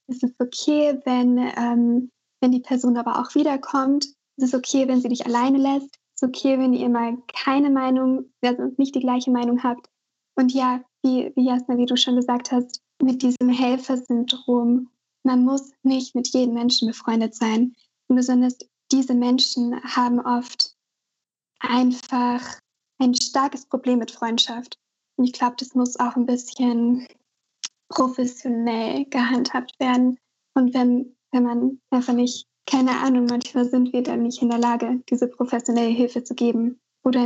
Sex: female